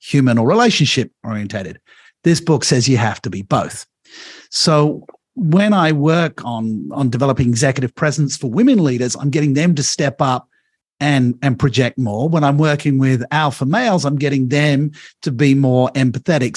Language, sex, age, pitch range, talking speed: English, male, 50-69, 130-175 Hz, 170 wpm